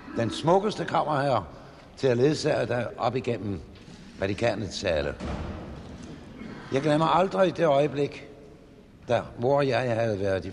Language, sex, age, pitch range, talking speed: Danish, male, 70-89, 100-145 Hz, 140 wpm